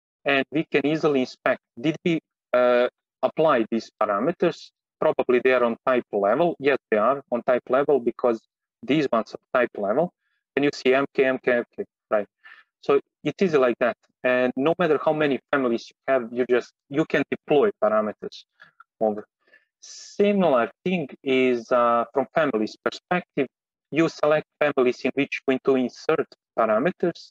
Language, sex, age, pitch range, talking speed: English, male, 30-49, 125-155 Hz, 160 wpm